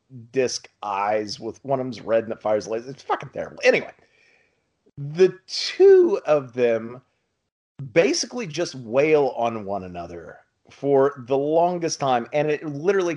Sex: male